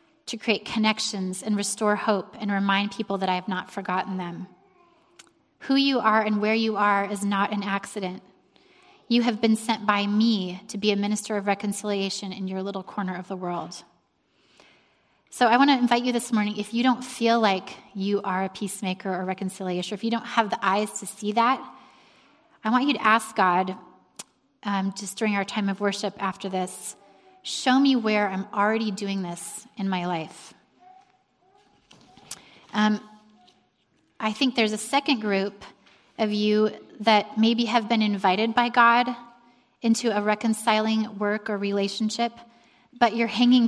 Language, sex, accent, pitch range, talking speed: English, female, American, 200-235 Hz, 170 wpm